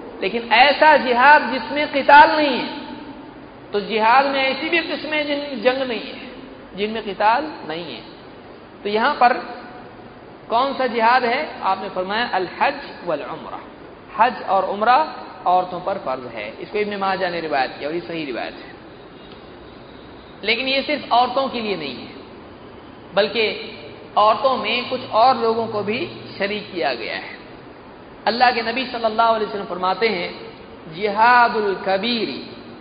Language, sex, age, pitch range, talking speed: Hindi, male, 50-69, 195-250 Hz, 145 wpm